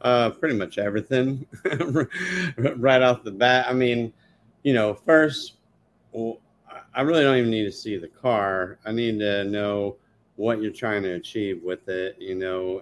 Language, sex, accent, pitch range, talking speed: English, male, American, 95-115 Hz, 170 wpm